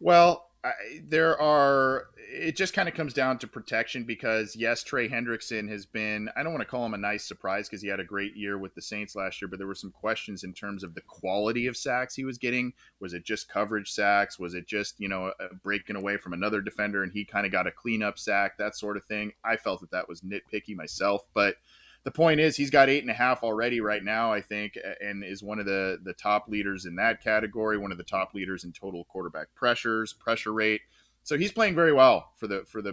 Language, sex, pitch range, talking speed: English, male, 100-125 Hz, 245 wpm